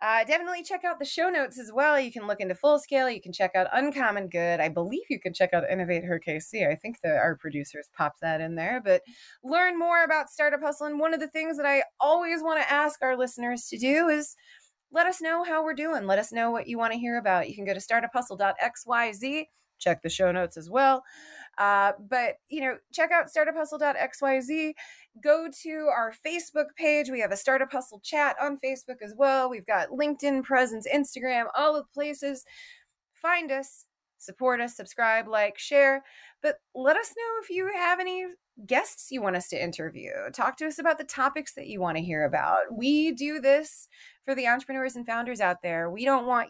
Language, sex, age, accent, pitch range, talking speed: English, female, 20-39, American, 200-300 Hz, 215 wpm